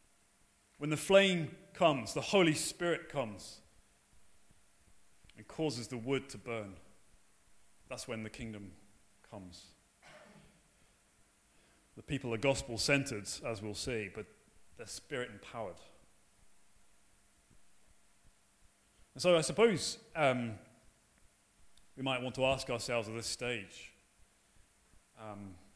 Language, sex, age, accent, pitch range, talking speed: English, male, 30-49, British, 105-155 Hz, 100 wpm